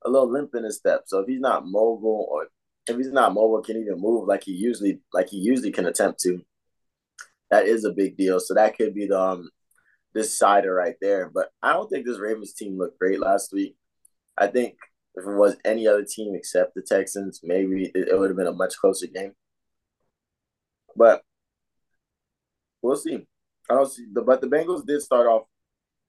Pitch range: 100-130 Hz